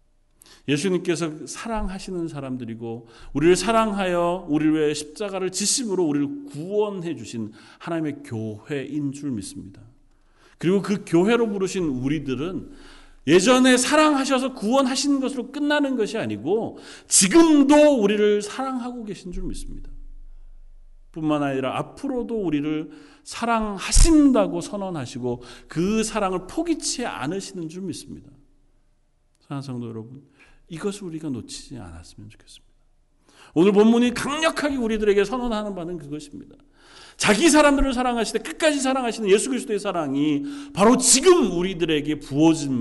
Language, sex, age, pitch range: Korean, male, 40-59, 150-250 Hz